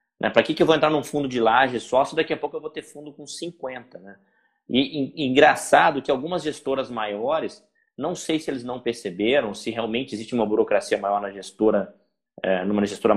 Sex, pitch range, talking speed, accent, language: male, 115-155 Hz, 205 wpm, Brazilian, Portuguese